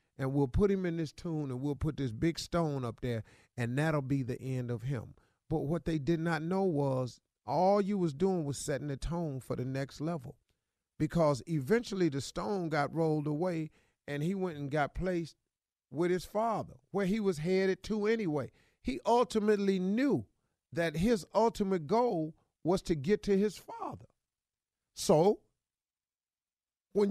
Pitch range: 135-190 Hz